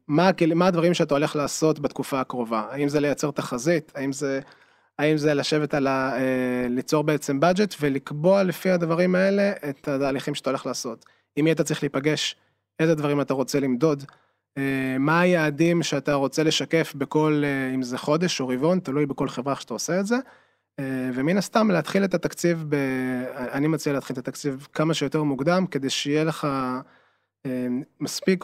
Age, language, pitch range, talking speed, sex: 20-39, Hebrew, 135-165 Hz, 160 wpm, male